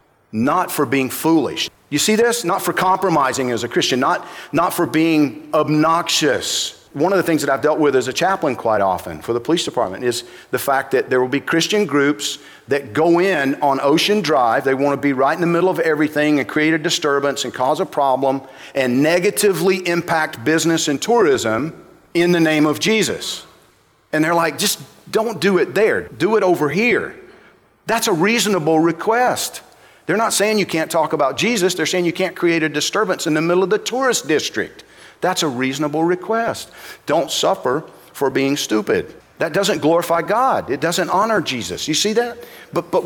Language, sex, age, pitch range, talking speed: English, male, 50-69, 145-185 Hz, 190 wpm